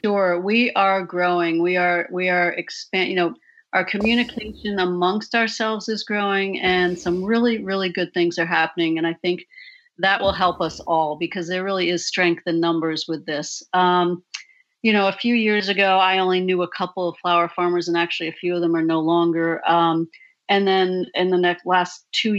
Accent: American